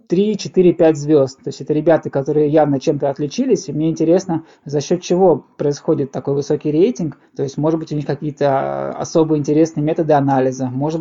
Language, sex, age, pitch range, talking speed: Russian, male, 20-39, 145-170 Hz, 175 wpm